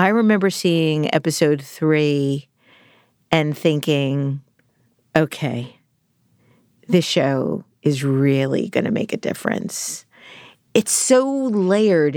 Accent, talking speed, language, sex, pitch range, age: American, 100 wpm, English, female, 145-175 Hz, 40-59